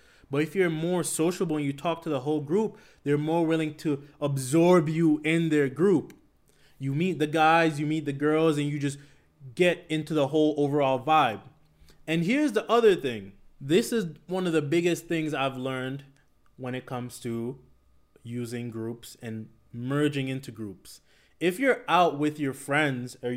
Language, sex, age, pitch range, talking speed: English, male, 20-39, 130-165 Hz, 175 wpm